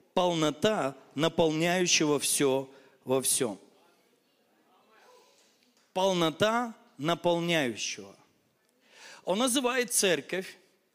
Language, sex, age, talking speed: Russian, male, 40-59, 55 wpm